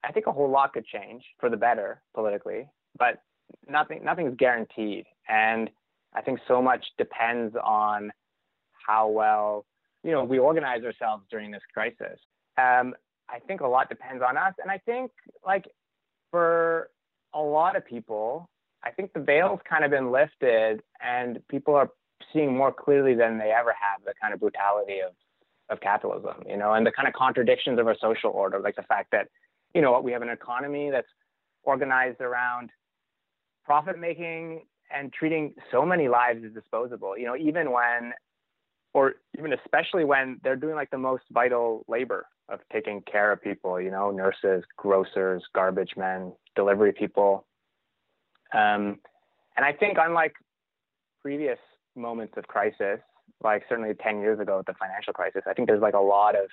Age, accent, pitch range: 20-39, American, 110-145 Hz